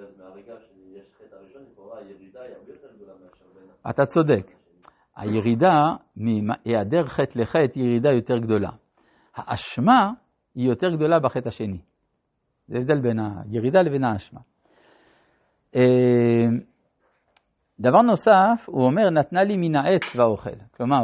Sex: male